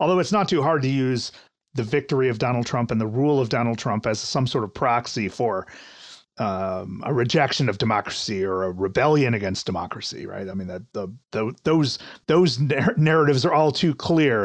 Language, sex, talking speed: English, male, 200 wpm